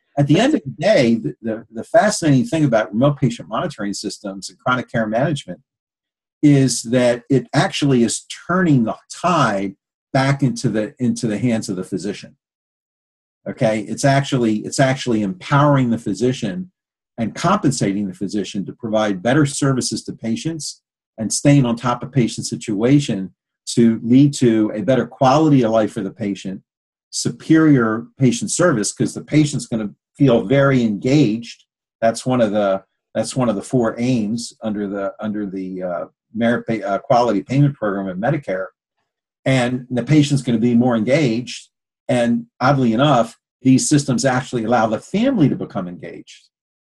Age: 50-69